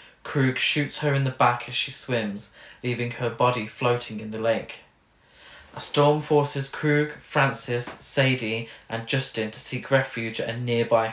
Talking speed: 160 wpm